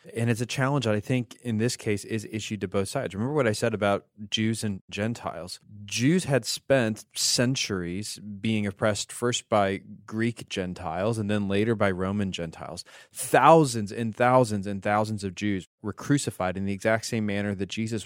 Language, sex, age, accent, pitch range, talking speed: English, male, 20-39, American, 100-125 Hz, 185 wpm